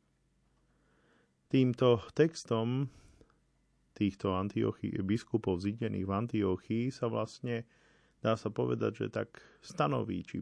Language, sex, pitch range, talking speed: Slovak, male, 95-115 Hz, 100 wpm